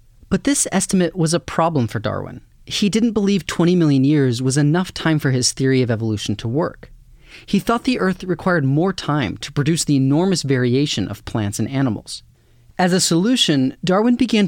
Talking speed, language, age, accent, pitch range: 185 wpm, English, 30-49, American, 115-175 Hz